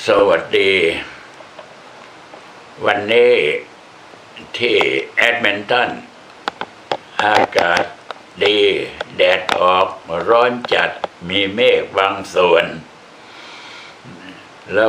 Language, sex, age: Thai, male, 60-79